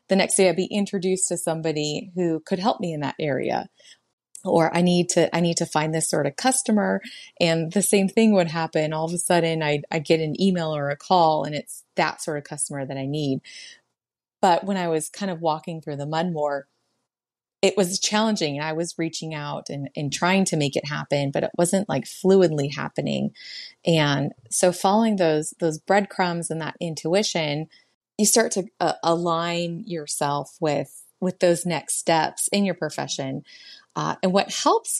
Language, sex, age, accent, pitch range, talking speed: English, female, 30-49, American, 160-195 Hz, 195 wpm